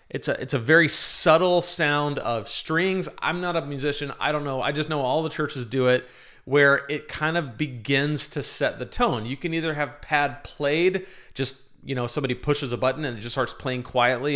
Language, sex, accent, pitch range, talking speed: English, male, American, 125-155 Hz, 215 wpm